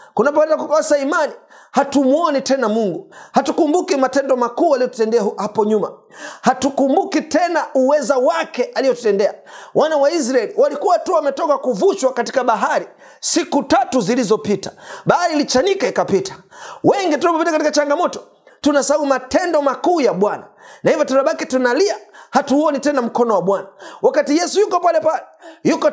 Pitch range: 230-305 Hz